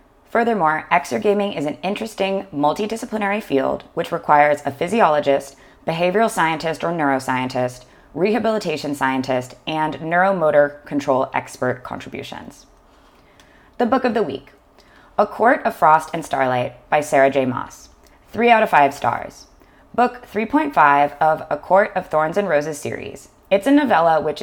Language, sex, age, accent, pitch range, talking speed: English, female, 20-39, American, 140-205 Hz, 140 wpm